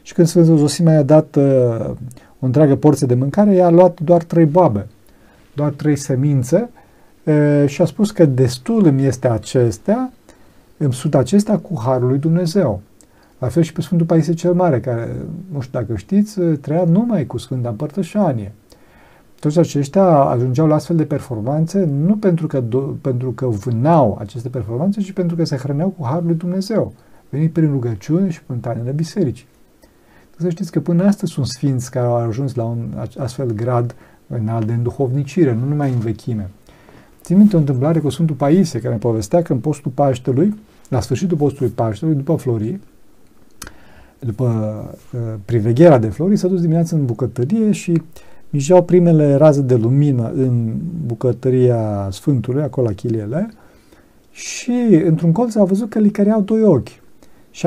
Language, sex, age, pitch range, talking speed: Romanian, male, 40-59, 125-175 Hz, 165 wpm